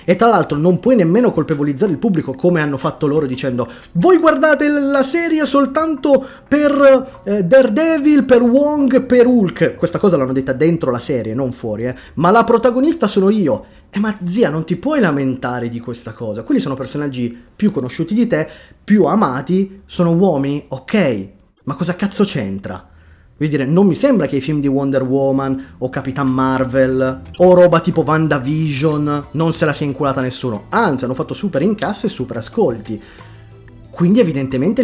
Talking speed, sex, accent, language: 175 wpm, male, native, Italian